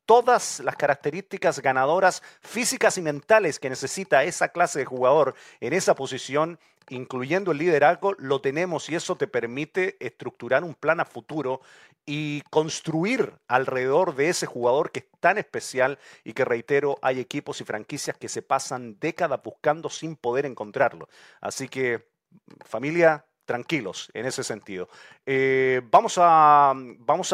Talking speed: 145 wpm